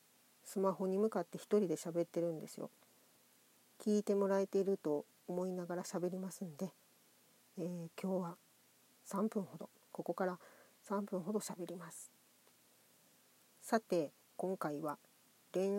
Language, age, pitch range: Japanese, 40-59, 170-205 Hz